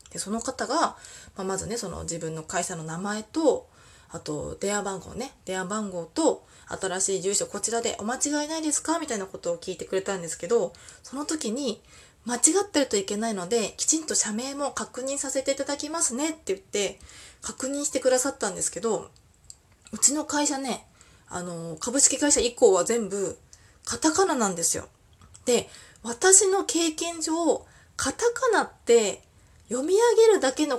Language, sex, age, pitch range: Japanese, female, 20-39, 195-305 Hz